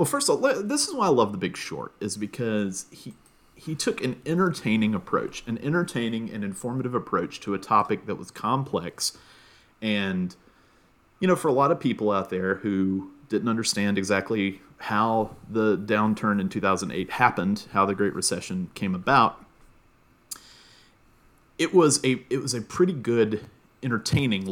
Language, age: English, 30-49